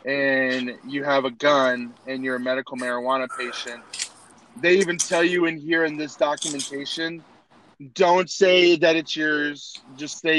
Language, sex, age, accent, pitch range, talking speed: English, male, 20-39, American, 130-155 Hz, 155 wpm